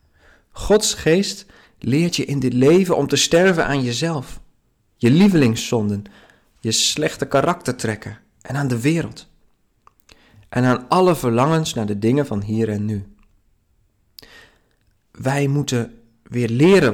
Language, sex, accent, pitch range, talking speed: Dutch, male, Dutch, 110-145 Hz, 130 wpm